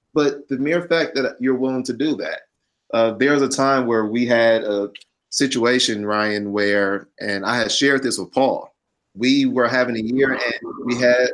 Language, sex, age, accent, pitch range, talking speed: English, male, 30-49, American, 115-140 Hz, 195 wpm